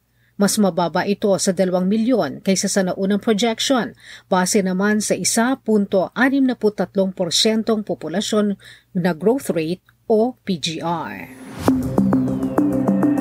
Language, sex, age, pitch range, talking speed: Filipino, female, 40-59, 180-225 Hz, 95 wpm